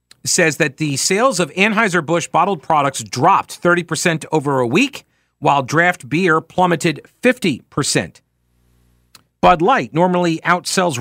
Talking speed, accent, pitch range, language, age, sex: 120 wpm, American, 130-185 Hz, English, 50-69, male